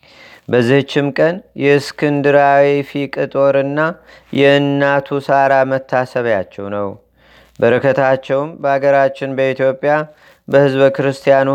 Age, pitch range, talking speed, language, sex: 30-49, 130-140 Hz, 70 wpm, Amharic, male